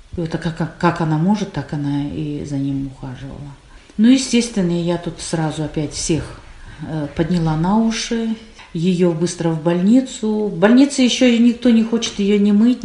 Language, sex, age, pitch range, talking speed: Russian, female, 40-59, 160-220 Hz, 170 wpm